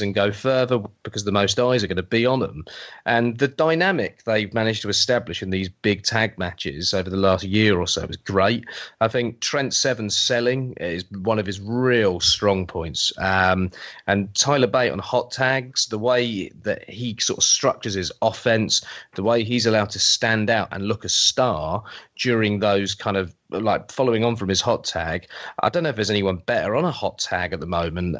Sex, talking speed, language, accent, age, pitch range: male, 205 wpm, English, British, 30-49, 100-125 Hz